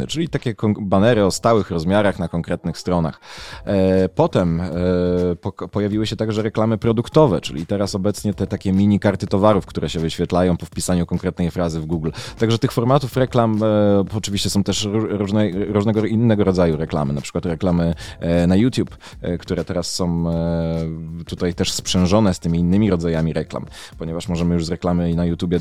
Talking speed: 155 wpm